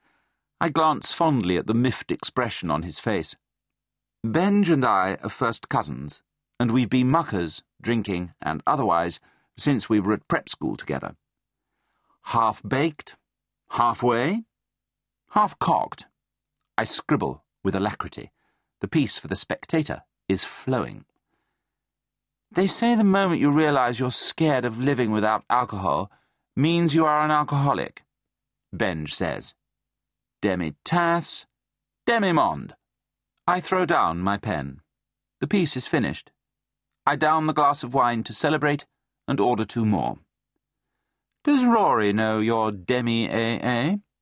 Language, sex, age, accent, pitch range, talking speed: English, male, 40-59, British, 110-155 Hz, 125 wpm